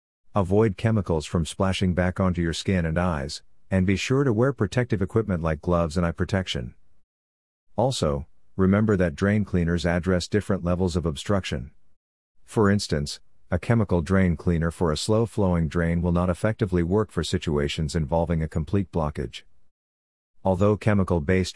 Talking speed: 150 wpm